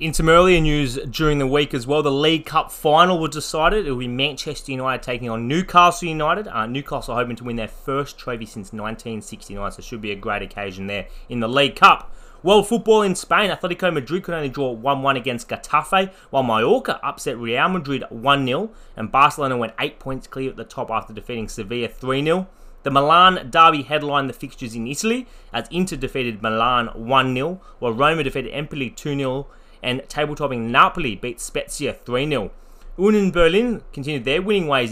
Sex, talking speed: male, 185 wpm